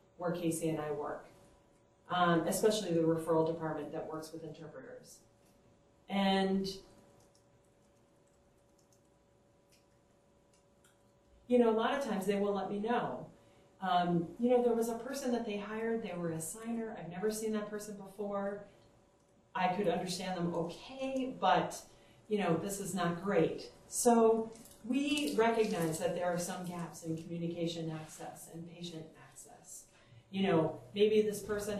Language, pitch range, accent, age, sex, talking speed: English, 170-220 Hz, American, 40-59, female, 145 wpm